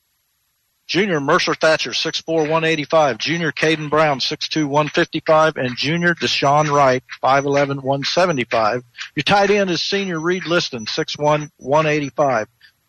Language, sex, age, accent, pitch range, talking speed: English, male, 50-69, American, 145-180 Hz, 115 wpm